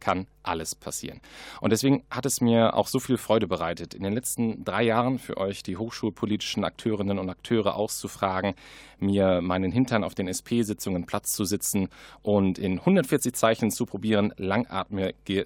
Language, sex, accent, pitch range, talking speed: German, male, German, 95-120 Hz, 165 wpm